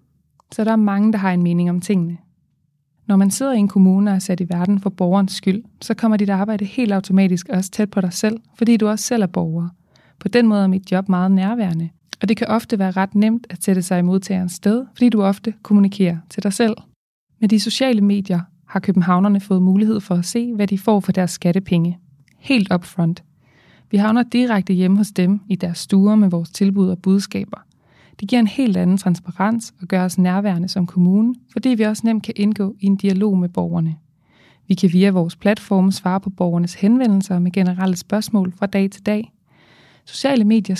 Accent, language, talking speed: native, Danish, 210 wpm